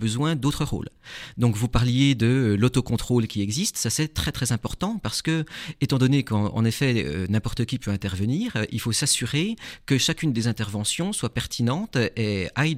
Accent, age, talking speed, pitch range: French, 40-59, 175 wpm, 100-130 Hz